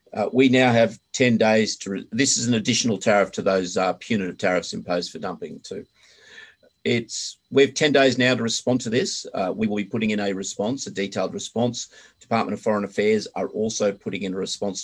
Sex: male